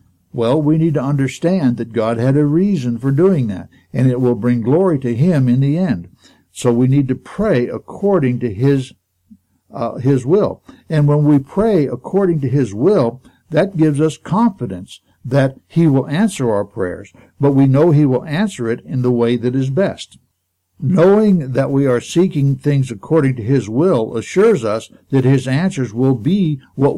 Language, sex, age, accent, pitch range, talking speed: English, male, 60-79, American, 120-160 Hz, 185 wpm